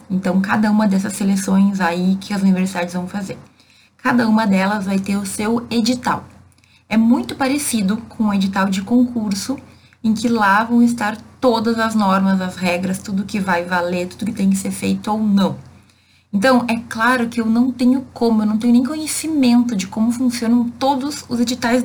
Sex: female